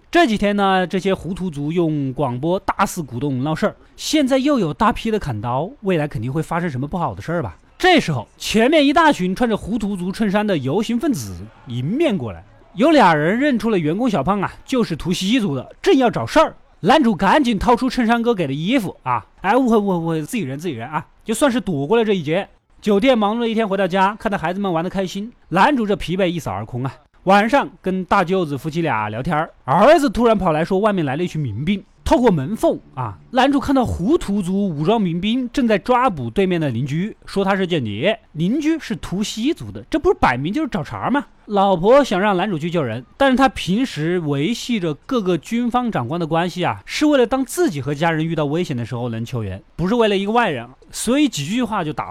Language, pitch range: Chinese, 160-240 Hz